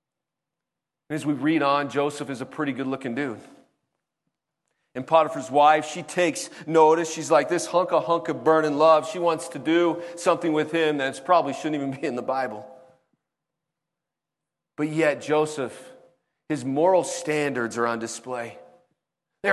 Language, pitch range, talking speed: English, 145-175 Hz, 155 wpm